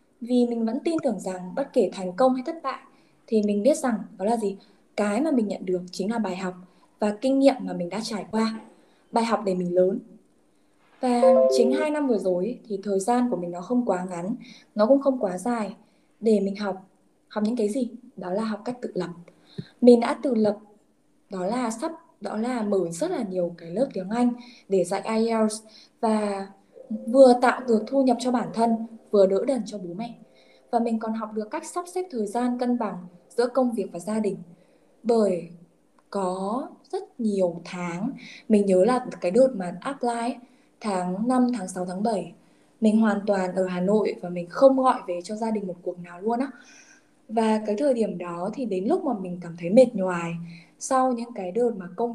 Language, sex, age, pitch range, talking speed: Vietnamese, female, 10-29, 190-245 Hz, 215 wpm